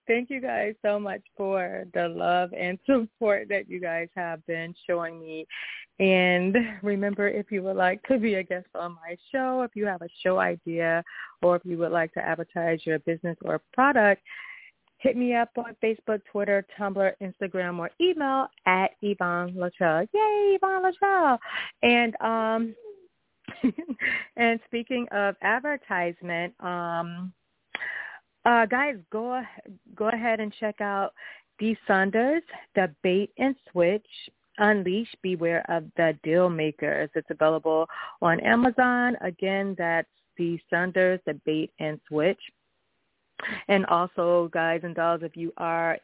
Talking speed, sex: 145 wpm, female